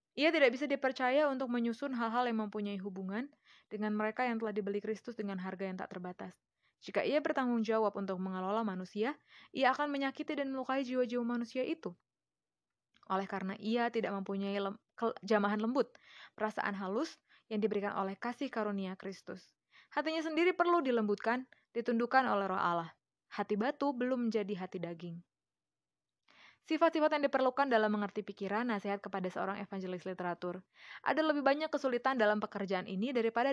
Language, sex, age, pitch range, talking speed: Indonesian, female, 20-39, 200-265 Hz, 150 wpm